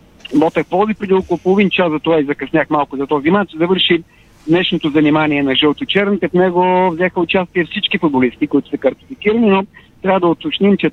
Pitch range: 155-190 Hz